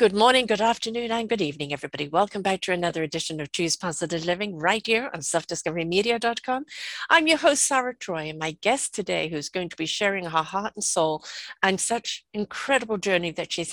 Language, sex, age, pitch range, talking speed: English, female, 50-69, 175-220 Hz, 195 wpm